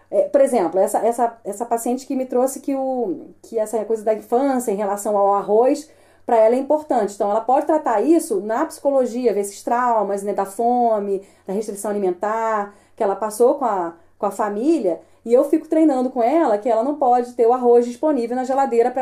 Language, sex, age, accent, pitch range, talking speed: Portuguese, female, 30-49, Brazilian, 205-275 Hz, 205 wpm